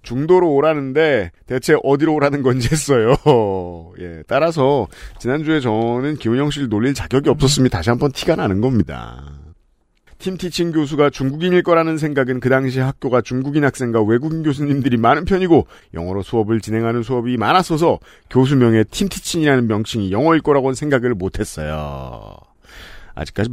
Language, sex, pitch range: Korean, male, 110-155 Hz